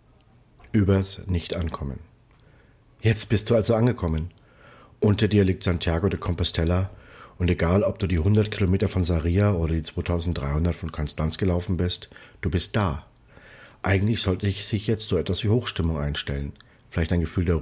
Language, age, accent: German, 50-69, German